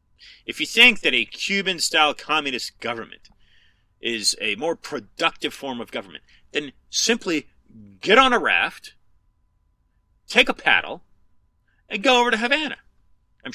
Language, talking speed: English, 135 wpm